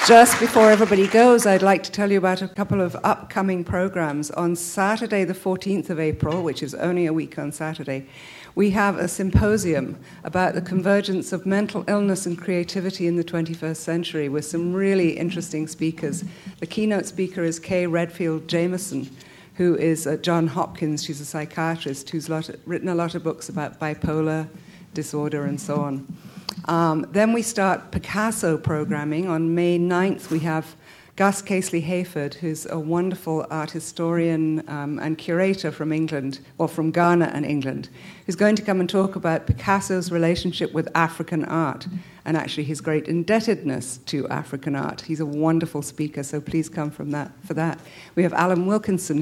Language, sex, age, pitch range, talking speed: English, female, 60-79, 155-185 Hz, 170 wpm